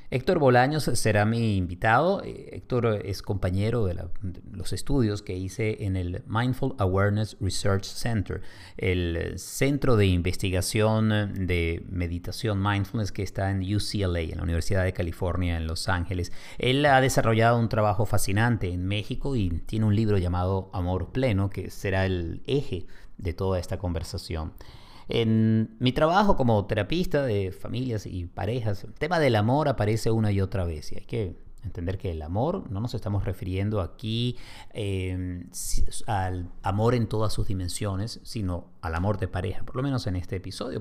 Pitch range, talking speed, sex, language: 95-115 Hz, 160 wpm, male, Spanish